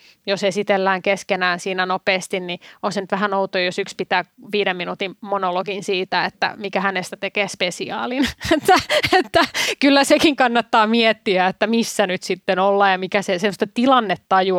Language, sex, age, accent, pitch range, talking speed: Finnish, female, 30-49, native, 190-240 Hz, 150 wpm